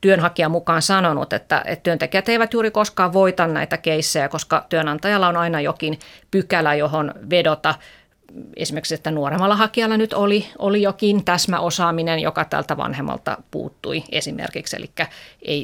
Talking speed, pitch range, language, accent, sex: 140 wpm, 165-200 Hz, Finnish, native, female